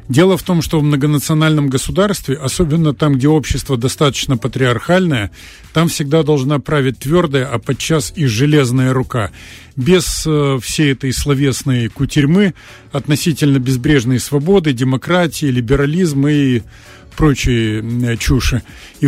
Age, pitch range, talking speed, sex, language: 50-69, 130-160 Hz, 115 wpm, male, Russian